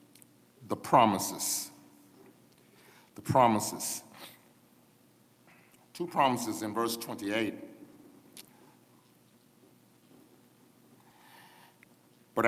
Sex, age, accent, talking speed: male, 50-69, American, 50 wpm